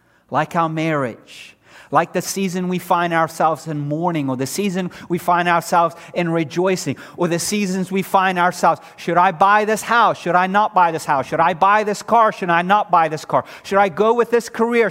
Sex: male